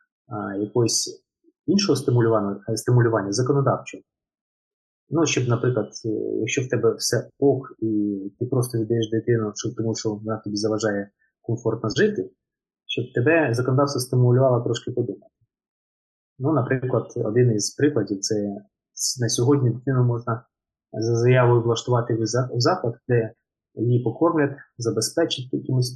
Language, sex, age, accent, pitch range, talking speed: Ukrainian, male, 30-49, native, 110-145 Hz, 125 wpm